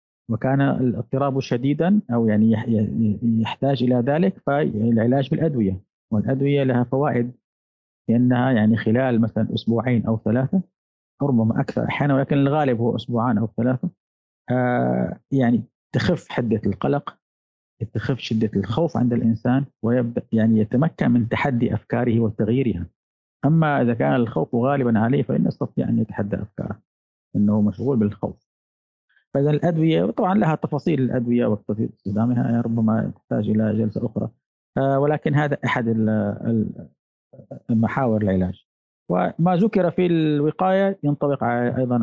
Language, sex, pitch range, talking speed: Arabic, male, 110-140 Hz, 120 wpm